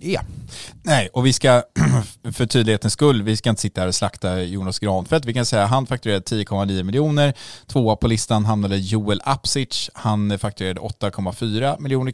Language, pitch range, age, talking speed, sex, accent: English, 95-120 Hz, 20-39, 175 wpm, male, Norwegian